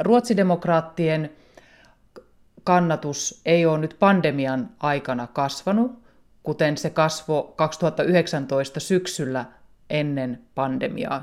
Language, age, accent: Finnish, 30-49, native